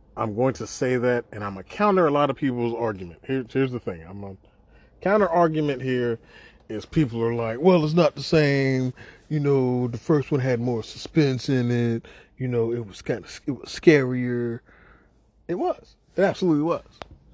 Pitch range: 105-140 Hz